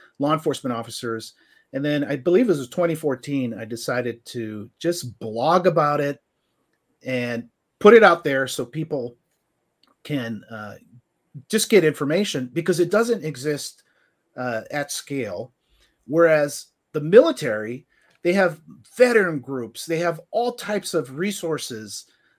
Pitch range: 130-170 Hz